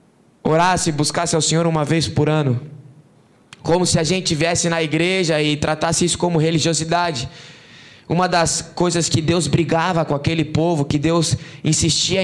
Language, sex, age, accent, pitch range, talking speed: Portuguese, male, 20-39, Brazilian, 145-170 Hz, 160 wpm